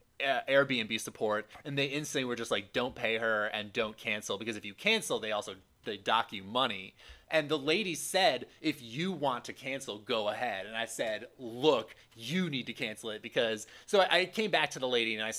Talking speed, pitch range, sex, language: 210 wpm, 110-145 Hz, male, English